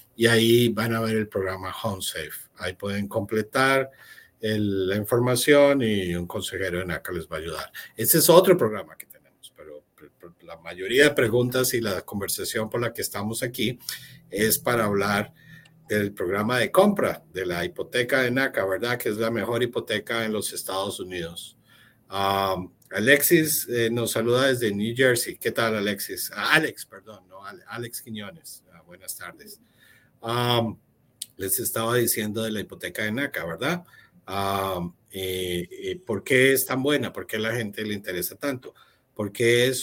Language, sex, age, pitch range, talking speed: Spanish, male, 50-69, 100-125 Hz, 165 wpm